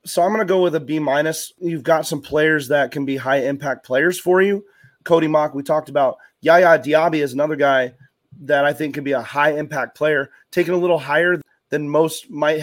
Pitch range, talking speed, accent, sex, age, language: 140-165 Hz, 225 wpm, American, male, 30-49, English